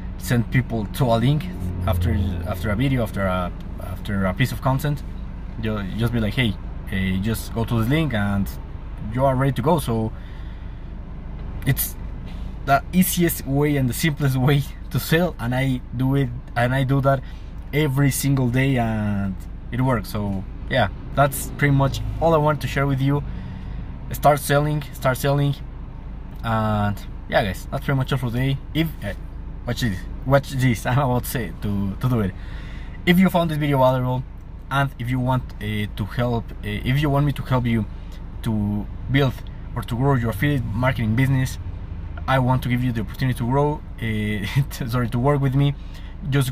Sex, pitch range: male, 100-135 Hz